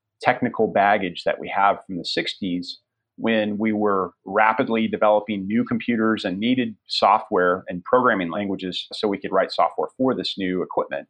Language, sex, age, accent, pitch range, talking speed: English, male, 30-49, American, 100-125 Hz, 160 wpm